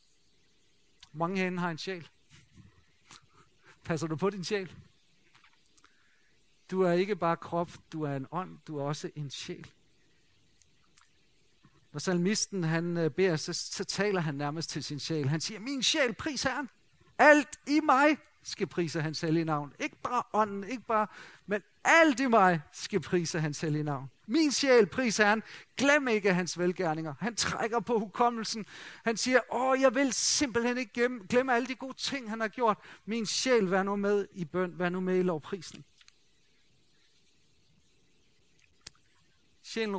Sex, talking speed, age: male, 160 wpm, 50-69